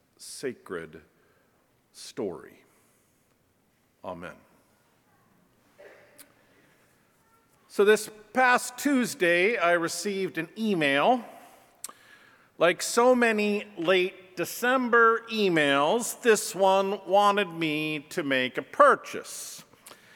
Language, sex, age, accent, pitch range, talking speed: English, male, 50-69, American, 185-255 Hz, 75 wpm